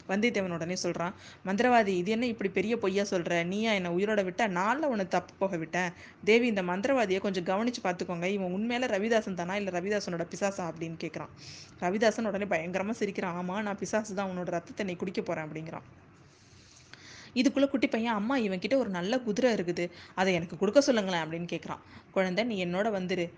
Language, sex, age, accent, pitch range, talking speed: Tamil, female, 20-39, native, 170-205 Hz, 170 wpm